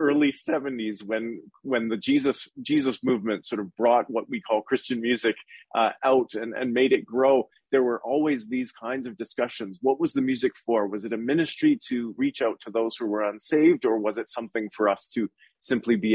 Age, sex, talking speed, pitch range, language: 30-49, male, 210 wpm, 110-135 Hz, English